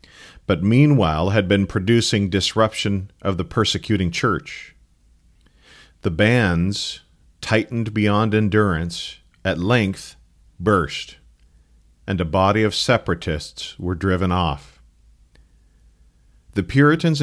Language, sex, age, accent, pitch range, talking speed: English, male, 40-59, American, 85-110 Hz, 100 wpm